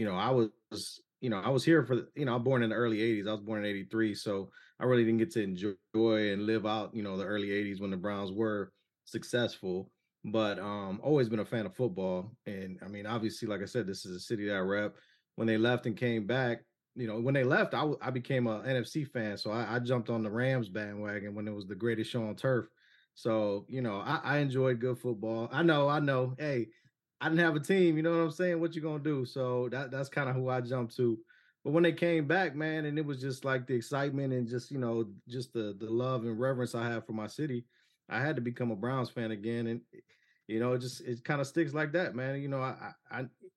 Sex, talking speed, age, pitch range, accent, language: male, 260 wpm, 20-39, 110-135 Hz, American, English